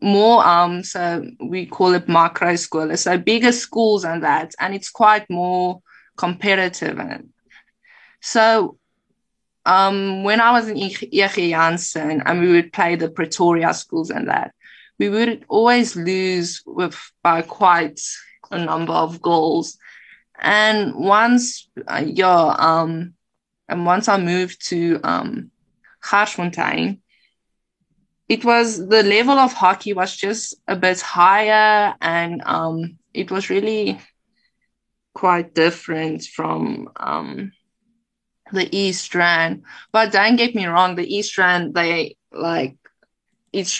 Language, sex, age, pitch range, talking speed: English, female, 20-39, 170-210 Hz, 125 wpm